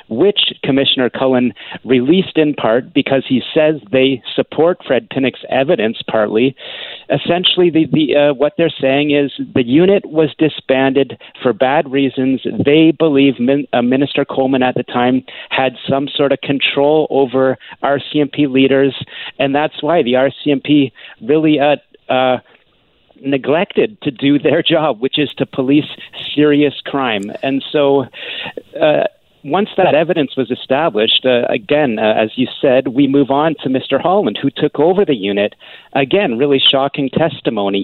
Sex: male